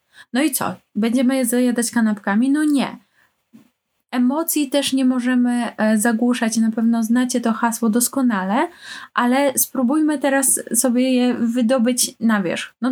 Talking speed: 135 wpm